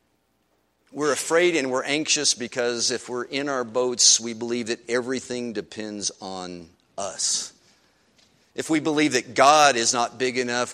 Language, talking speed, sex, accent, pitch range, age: English, 150 wpm, male, American, 110-150 Hz, 50-69